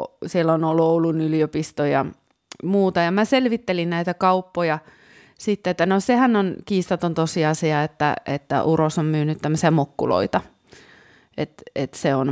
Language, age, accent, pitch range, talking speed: Finnish, 30-49, native, 150-185 Hz, 145 wpm